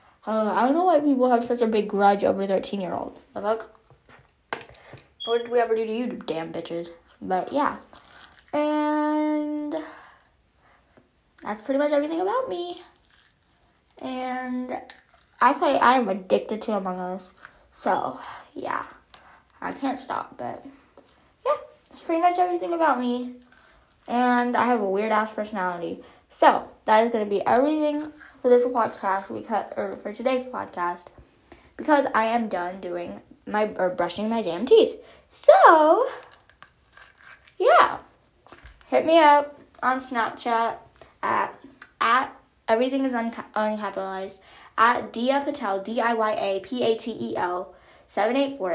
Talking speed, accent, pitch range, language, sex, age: 135 wpm, American, 200-275 Hz, English, female, 10-29